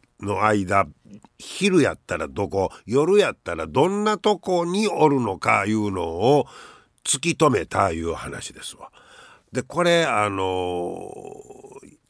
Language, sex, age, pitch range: Japanese, male, 60-79, 110-170 Hz